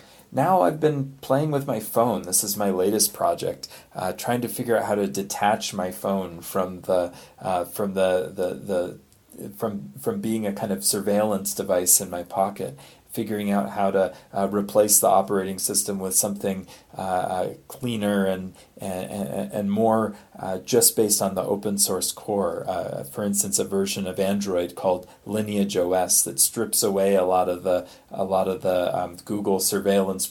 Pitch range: 95-110 Hz